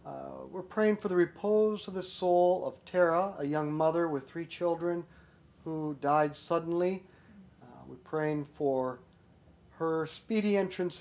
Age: 40-59